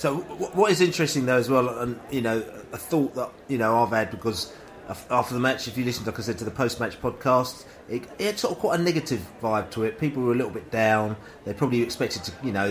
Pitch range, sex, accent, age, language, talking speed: 110-130 Hz, male, British, 30-49, English, 260 wpm